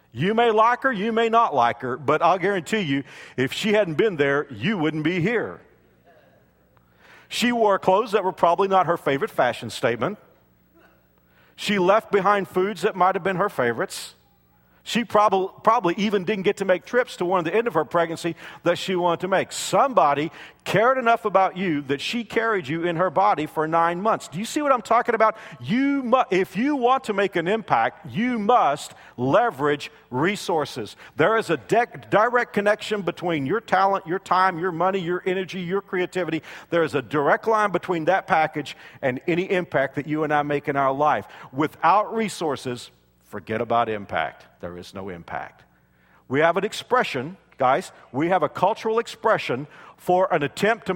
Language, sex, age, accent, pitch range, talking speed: English, male, 50-69, American, 135-200 Hz, 185 wpm